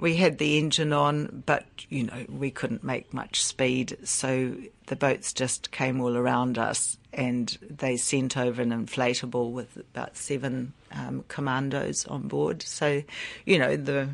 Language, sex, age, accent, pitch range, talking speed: English, female, 50-69, Australian, 125-150 Hz, 160 wpm